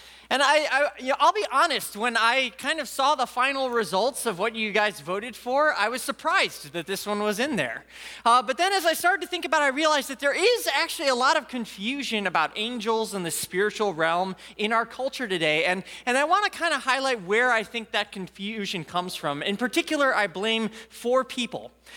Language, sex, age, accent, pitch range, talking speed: English, male, 20-39, American, 210-280 Hz, 225 wpm